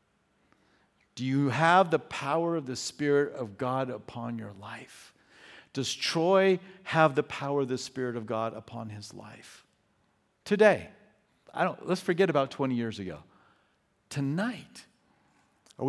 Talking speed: 130 wpm